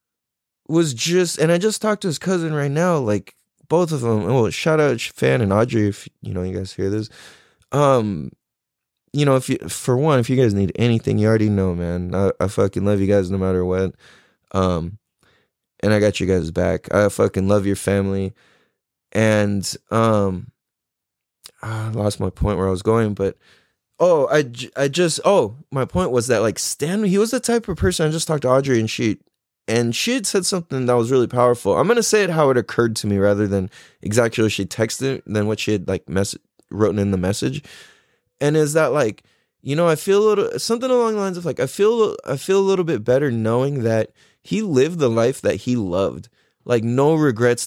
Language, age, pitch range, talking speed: English, 20-39, 100-165 Hz, 215 wpm